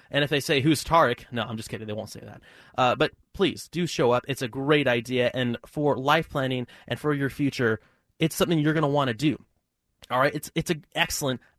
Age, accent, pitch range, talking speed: 20-39, American, 130-170 Hz, 240 wpm